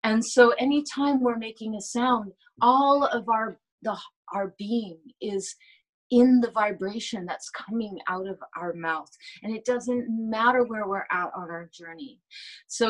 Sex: female